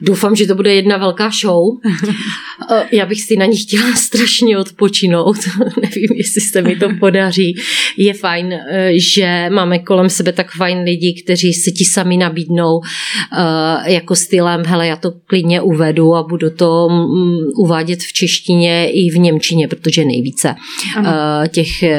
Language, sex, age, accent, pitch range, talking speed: Czech, female, 30-49, native, 165-195 Hz, 145 wpm